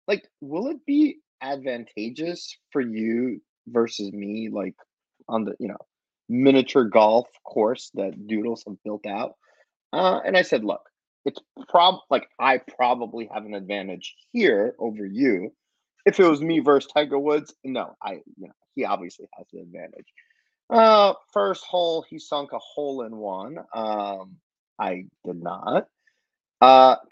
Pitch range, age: 105-160 Hz, 30-49